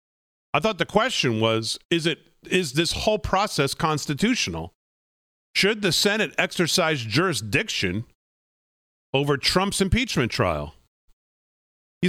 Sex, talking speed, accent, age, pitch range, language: male, 110 wpm, American, 40-59, 130-185 Hz, English